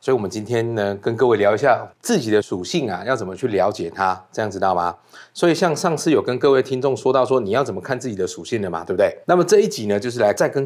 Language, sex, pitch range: Chinese, male, 105-155 Hz